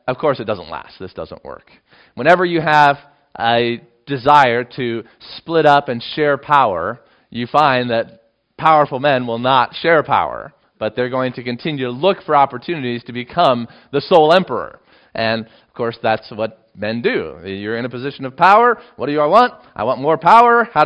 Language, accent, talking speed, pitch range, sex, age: English, American, 185 wpm, 115-155 Hz, male, 30-49